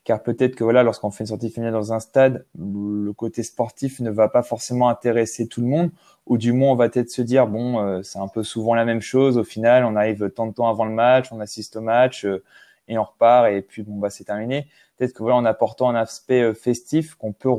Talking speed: 255 wpm